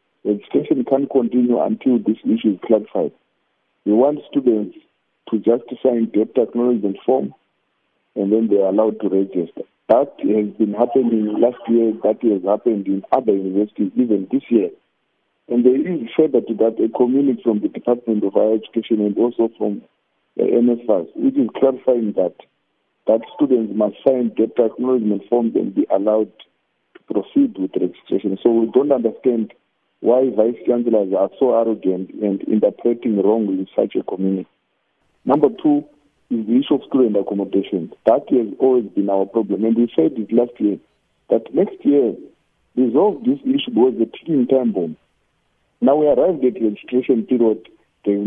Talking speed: 160 wpm